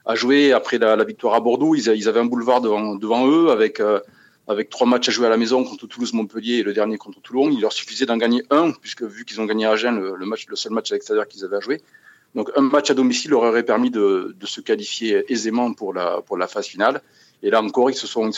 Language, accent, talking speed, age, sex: French, French, 270 wpm, 40-59, male